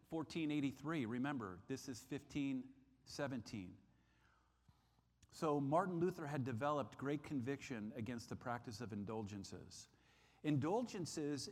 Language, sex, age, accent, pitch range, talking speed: English, male, 50-69, American, 110-150 Hz, 95 wpm